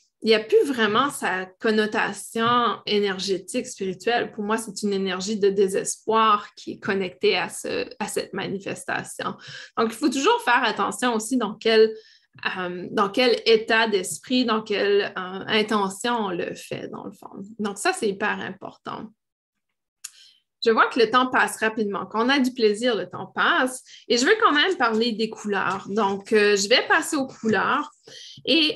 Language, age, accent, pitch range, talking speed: French, 20-39, Canadian, 205-255 Hz, 175 wpm